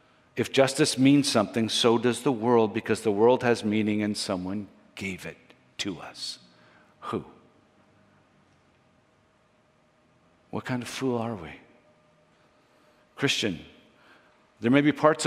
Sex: male